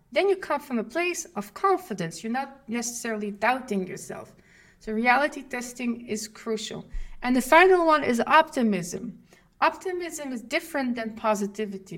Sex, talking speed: female, 145 wpm